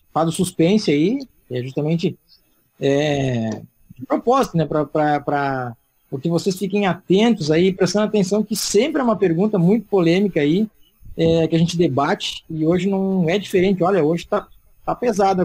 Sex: male